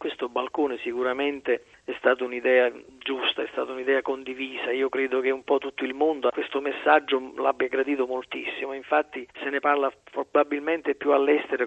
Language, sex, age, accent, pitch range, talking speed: Italian, male, 40-59, native, 125-140 Hz, 165 wpm